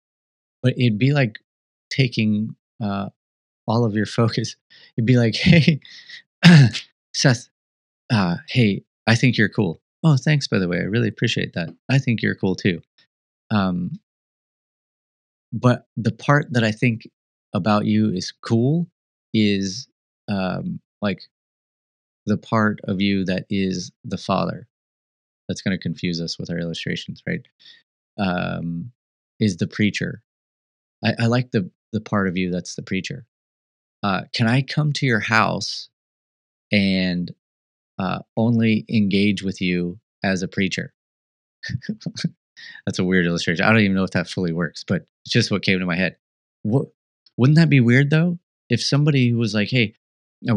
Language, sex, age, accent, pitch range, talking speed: English, male, 30-49, American, 95-120 Hz, 155 wpm